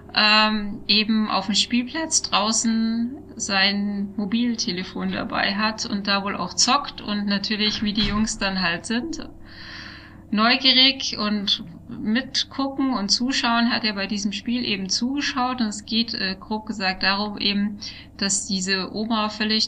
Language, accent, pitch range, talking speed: German, German, 200-235 Hz, 145 wpm